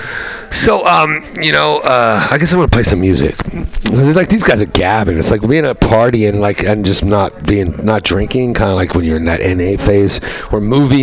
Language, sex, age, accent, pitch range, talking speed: English, male, 60-79, American, 95-135 Hz, 240 wpm